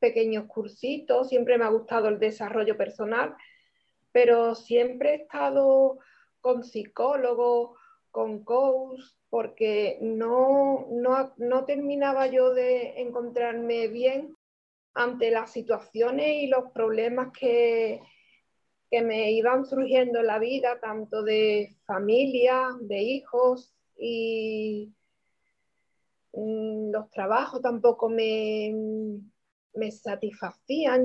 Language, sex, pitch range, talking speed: Spanish, female, 220-260 Hz, 100 wpm